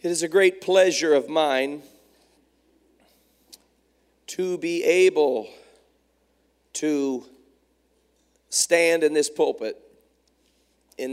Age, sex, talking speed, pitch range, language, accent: 40-59, male, 85 wpm, 125-190 Hz, English, American